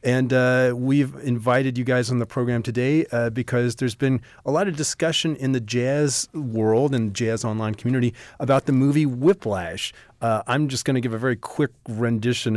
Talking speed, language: 190 wpm, English